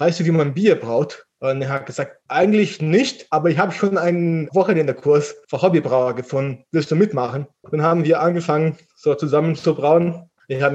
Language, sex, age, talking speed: German, male, 20-39, 190 wpm